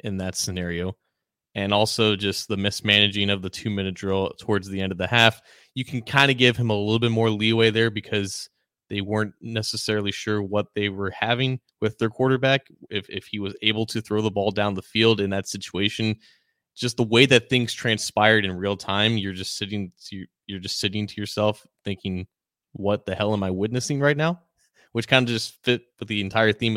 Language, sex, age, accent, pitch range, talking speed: English, male, 20-39, American, 100-115 Hz, 210 wpm